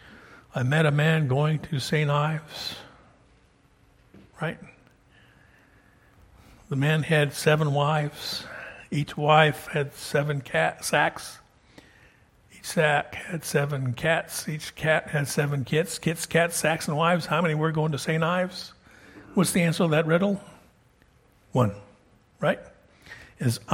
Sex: male